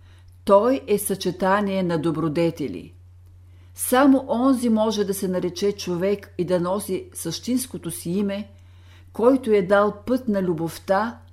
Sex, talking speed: female, 125 wpm